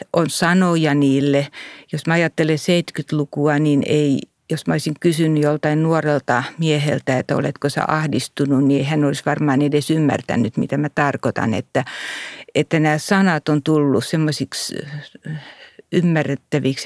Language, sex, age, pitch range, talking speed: Finnish, female, 50-69, 140-155 Hz, 130 wpm